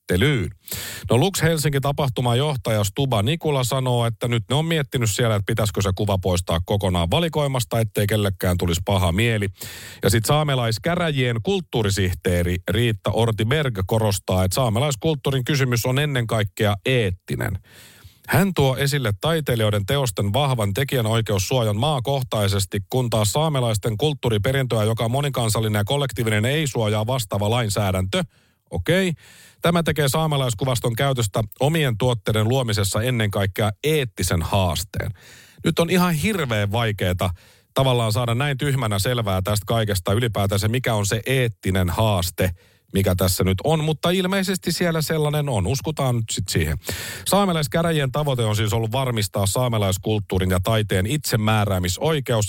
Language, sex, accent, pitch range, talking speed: Finnish, male, native, 100-140 Hz, 130 wpm